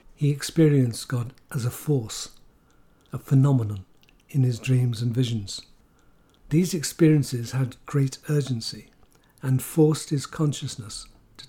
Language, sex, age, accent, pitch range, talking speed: English, male, 60-79, British, 125-145 Hz, 120 wpm